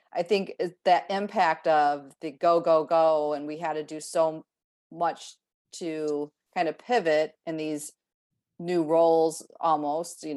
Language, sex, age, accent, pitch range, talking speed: English, female, 40-59, American, 150-175 Hz, 150 wpm